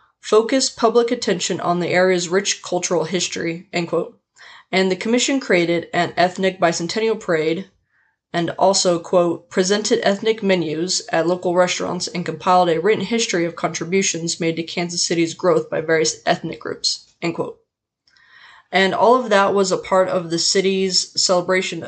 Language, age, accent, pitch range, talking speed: English, 20-39, American, 165-200 Hz, 155 wpm